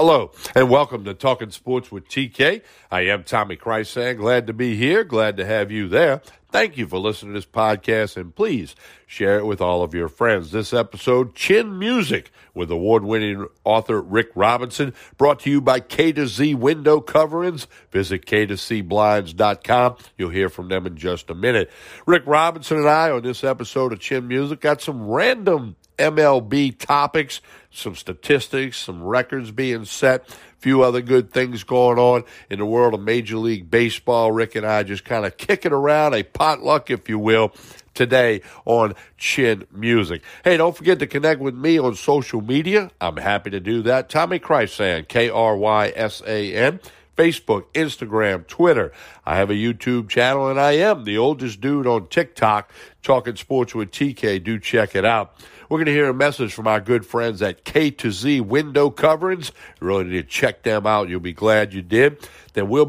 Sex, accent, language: male, American, English